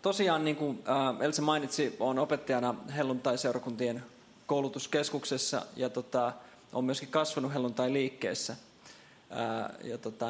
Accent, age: native, 20-39